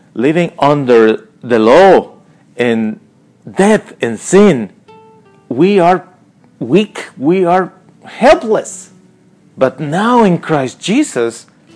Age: 40-59